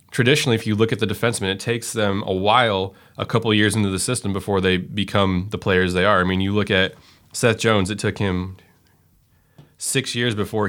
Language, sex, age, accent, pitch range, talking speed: English, male, 20-39, American, 95-110 Hz, 215 wpm